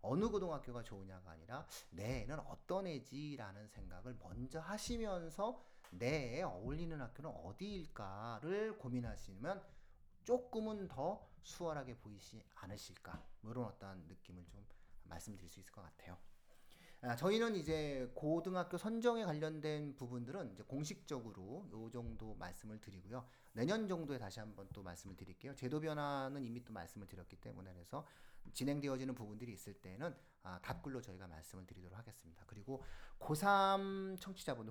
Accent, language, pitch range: Korean, English, 100-155 Hz